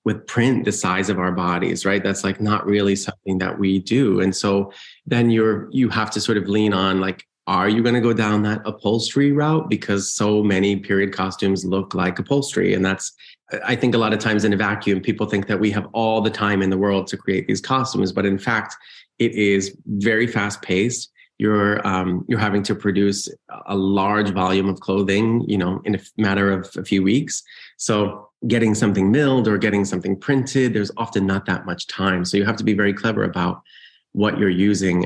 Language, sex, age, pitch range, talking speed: English, male, 30-49, 95-110 Hz, 210 wpm